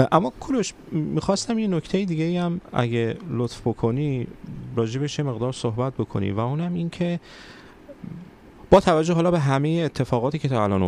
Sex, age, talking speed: male, 30-49, 155 wpm